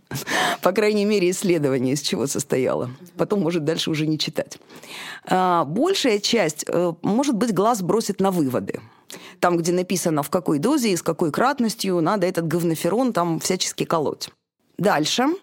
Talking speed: 150 wpm